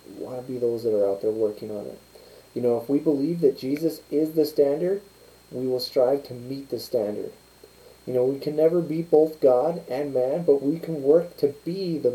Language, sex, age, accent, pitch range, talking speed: English, male, 30-49, American, 140-195 Hz, 225 wpm